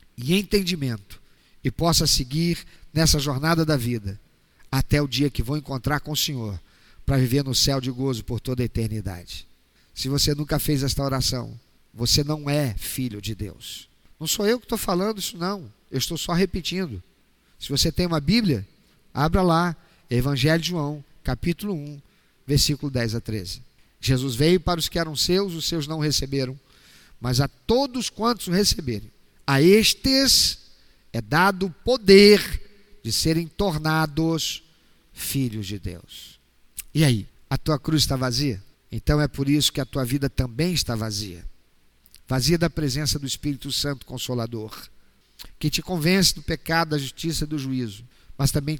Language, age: Portuguese, 50-69